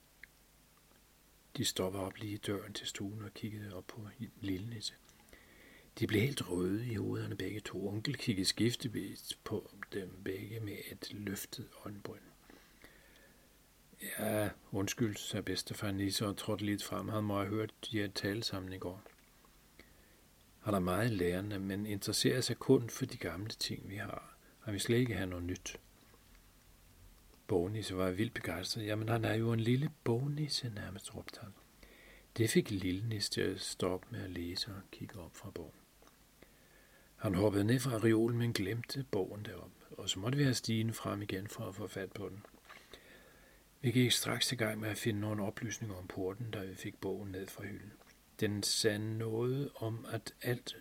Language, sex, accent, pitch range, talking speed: Danish, male, native, 95-115 Hz, 175 wpm